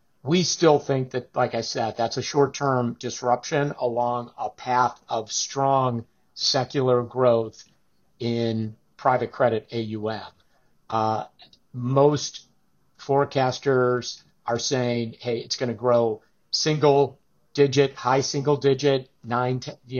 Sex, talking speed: male, 110 wpm